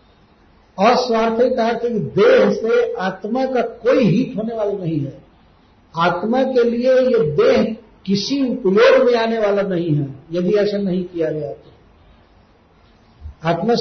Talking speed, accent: 135 wpm, native